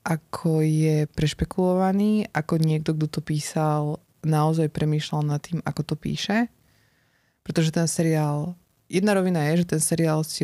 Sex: female